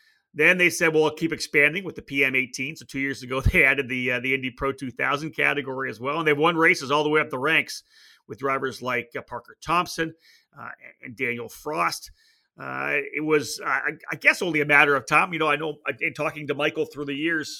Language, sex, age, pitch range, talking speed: English, male, 30-49, 135-160 Hz, 230 wpm